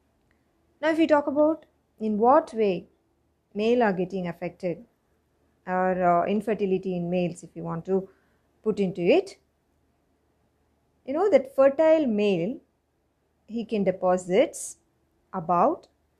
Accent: Indian